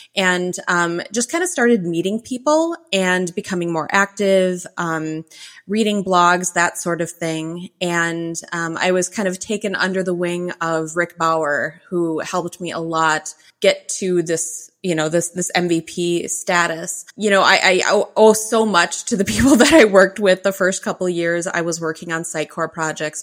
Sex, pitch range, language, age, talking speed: female, 170-195 Hz, English, 20-39, 185 wpm